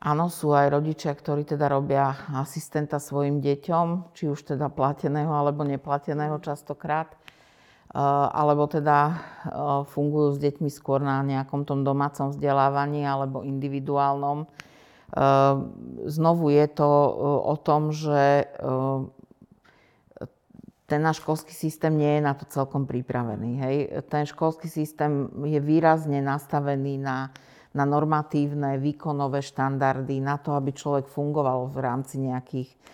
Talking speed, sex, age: 120 wpm, female, 50-69